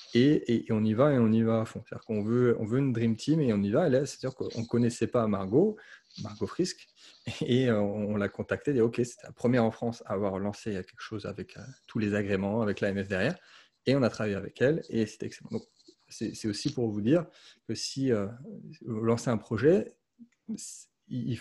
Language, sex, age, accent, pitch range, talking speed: French, male, 30-49, French, 110-130 Hz, 230 wpm